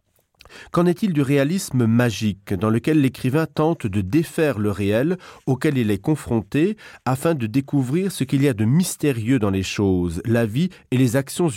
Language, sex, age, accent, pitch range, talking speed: French, male, 40-59, French, 110-145 Hz, 175 wpm